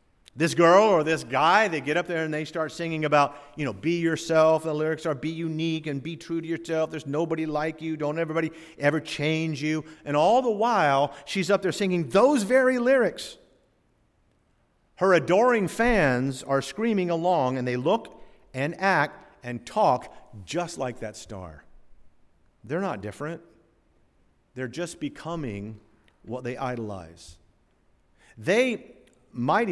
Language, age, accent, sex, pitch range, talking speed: English, 50-69, American, male, 130-170 Hz, 155 wpm